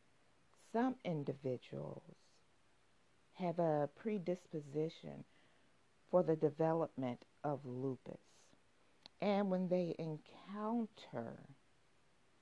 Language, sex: English, female